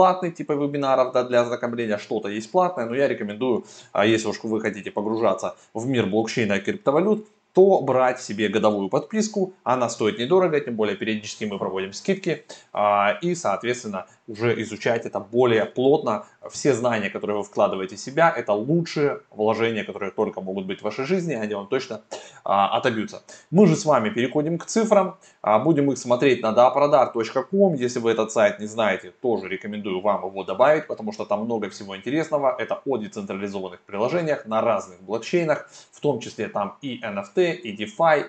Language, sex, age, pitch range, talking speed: Russian, male, 20-39, 110-165 Hz, 170 wpm